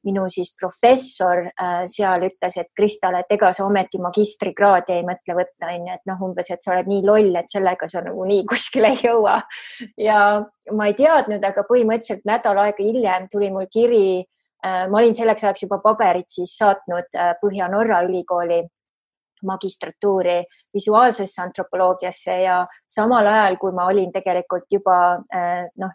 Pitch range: 180-210 Hz